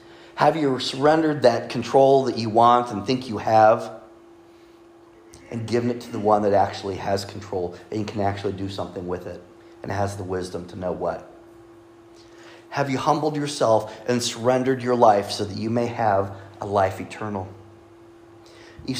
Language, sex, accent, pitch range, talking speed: English, male, American, 105-130 Hz, 165 wpm